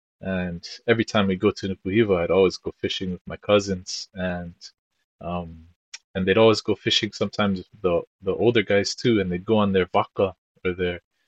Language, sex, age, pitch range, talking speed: English, male, 20-39, 95-110 Hz, 185 wpm